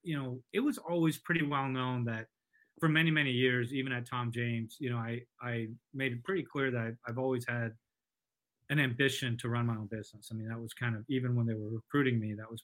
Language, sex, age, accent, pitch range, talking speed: English, male, 30-49, American, 120-150 Hz, 240 wpm